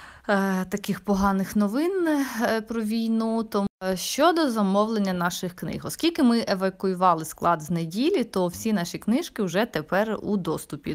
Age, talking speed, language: 20-39, 130 wpm, Ukrainian